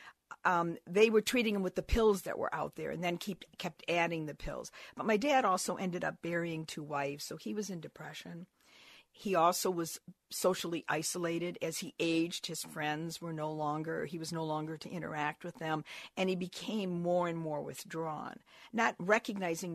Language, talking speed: English, 190 wpm